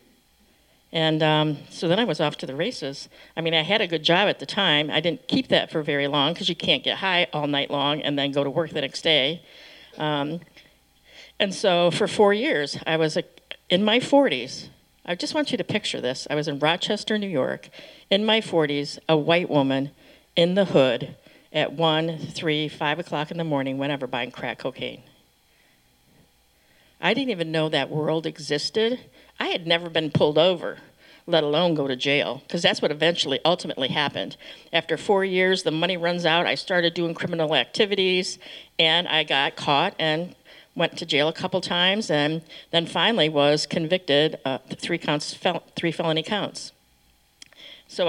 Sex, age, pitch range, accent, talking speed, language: female, 50-69, 150-190 Hz, American, 185 wpm, English